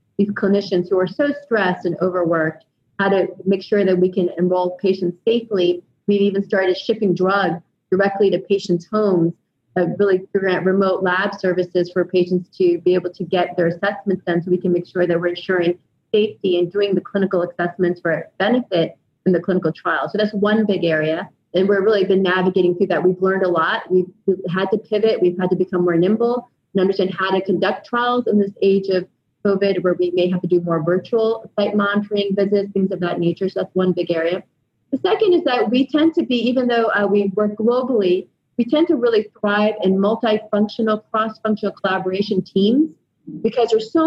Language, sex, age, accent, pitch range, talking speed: English, female, 30-49, American, 180-210 Hz, 200 wpm